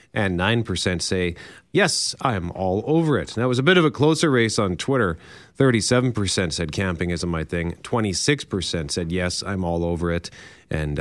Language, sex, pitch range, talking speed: English, male, 90-130 Hz, 180 wpm